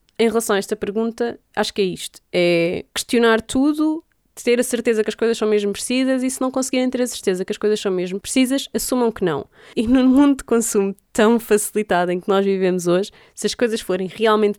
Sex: female